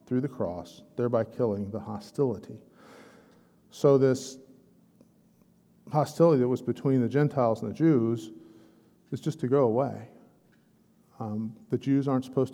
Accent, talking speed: American, 135 wpm